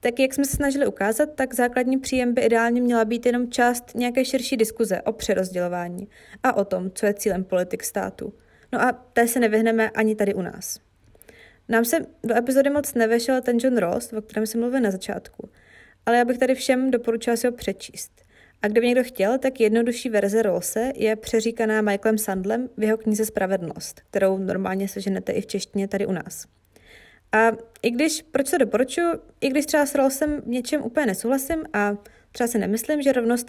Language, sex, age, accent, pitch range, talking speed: Czech, female, 20-39, native, 215-260 Hz, 190 wpm